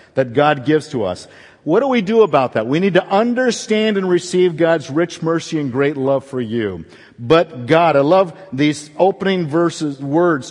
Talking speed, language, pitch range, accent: 190 wpm, English, 140-200 Hz, American